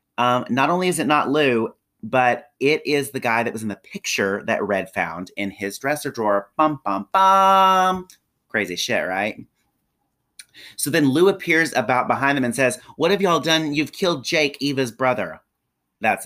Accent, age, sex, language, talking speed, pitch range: American, 30-49, male, English, 180 wpm, 115-150 Hz